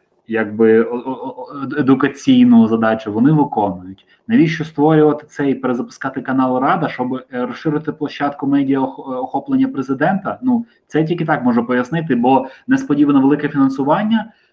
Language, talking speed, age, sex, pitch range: Ukrainian, 110 wpm, 20-39, male, 125-160 Hz